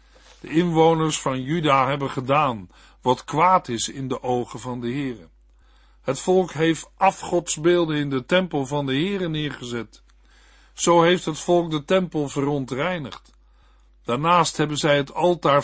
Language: Dutch